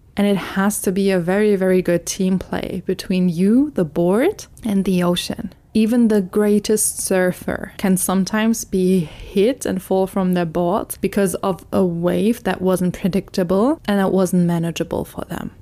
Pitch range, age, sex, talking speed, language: 180-210 Hz, 20-39, female, 170 wpm, English